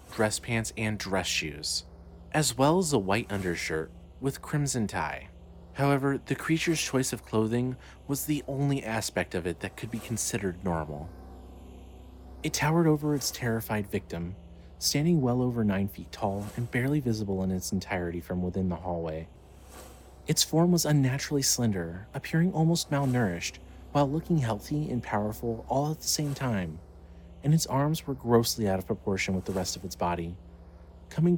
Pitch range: 85-135 Hz